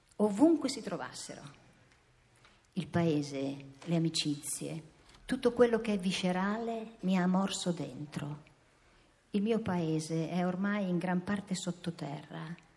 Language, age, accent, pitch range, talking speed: Italian, 50-69, native, 150-225 Hz, 115 wpm